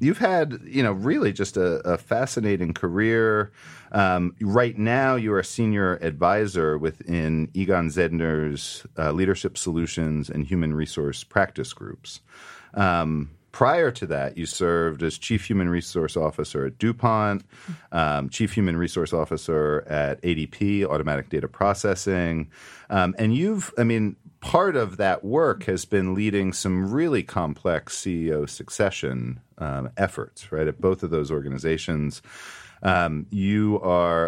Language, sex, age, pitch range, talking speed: English, male, 40-59, 75-100 Hz, 140 wpm